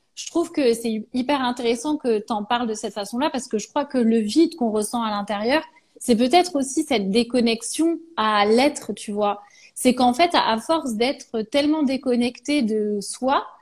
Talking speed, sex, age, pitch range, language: 190 wpm, female, 30-49, 215-285 Hz, French